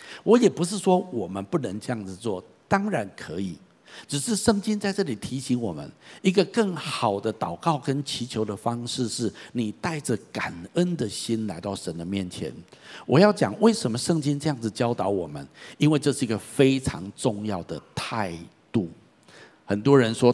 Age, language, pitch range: 60-79, Chinese, 105-170 Hz